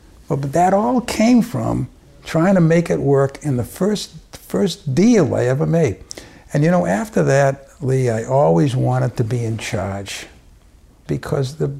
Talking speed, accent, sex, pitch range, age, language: 170 wpm, American, male, 105-140 Hz, 60-79, English